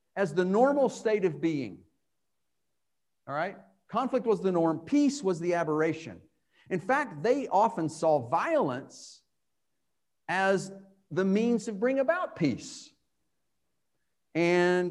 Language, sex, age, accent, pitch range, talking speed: English, male, 50-69, American, 160-225 Hz, 120 wpm